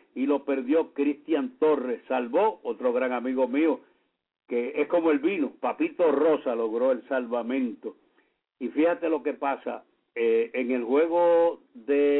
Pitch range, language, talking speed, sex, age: 140-185 Hz, English, 150 wpm, male, 60-79